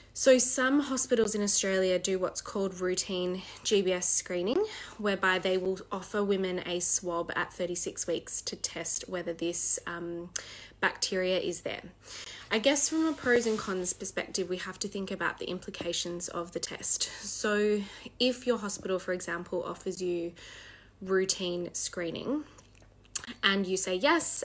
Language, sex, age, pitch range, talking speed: English, female, 20-39, 175-205 Hz, 150 wpm